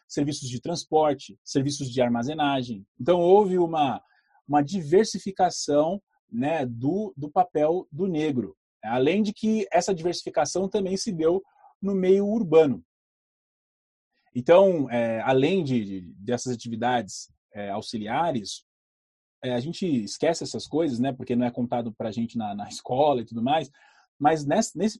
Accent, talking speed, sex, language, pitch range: Brazilian, 130 wpm, male, Portuguese, 125-190 Hz